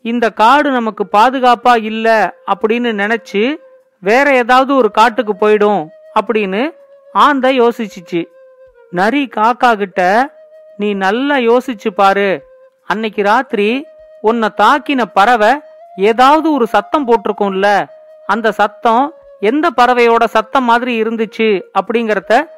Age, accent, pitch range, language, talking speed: 40-59, native, 215-275 Hz, Tamil, 105 wpm